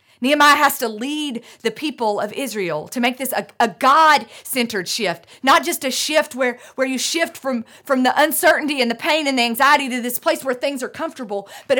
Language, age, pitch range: English, 40-59, 215-275 Hz